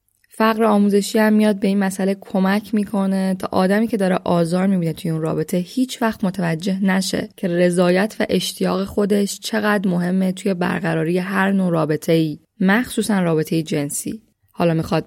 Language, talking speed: Persian, 160 wpm